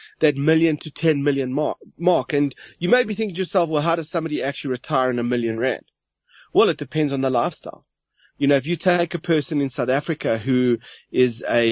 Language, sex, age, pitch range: English, male, 30-49, 130-155 Hz